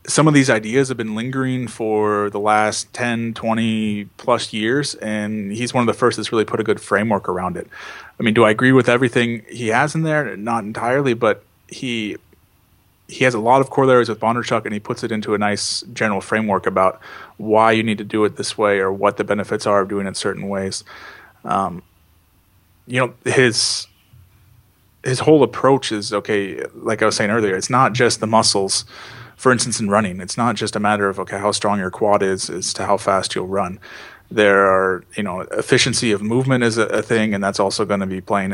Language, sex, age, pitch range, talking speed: English, male, 30-49, 100-120 Hz, 215 wpm